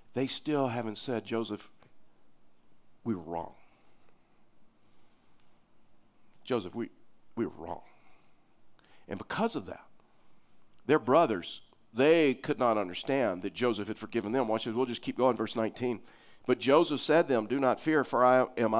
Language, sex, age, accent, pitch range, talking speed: English, male, 50-69, American, 120-145 Hz, 150 wpm